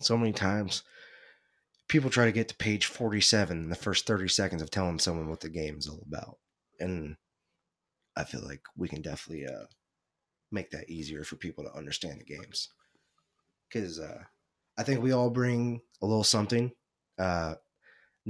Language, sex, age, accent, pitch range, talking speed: English, male, 20-39, American, 85-110 Hz, 165 wpm